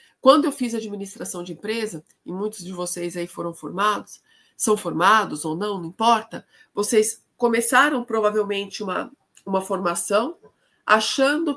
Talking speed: 135 wpm